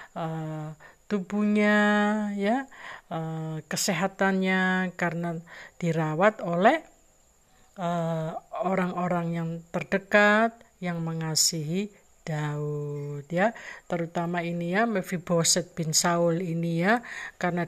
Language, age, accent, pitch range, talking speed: Indonesian, 50-69, native, 165-210 Hz, 75 wpm